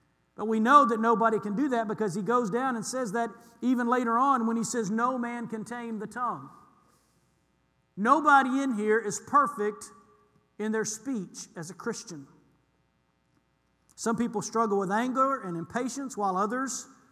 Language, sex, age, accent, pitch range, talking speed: English, male, 50-69, American, 200-245 Hz, 165 wpm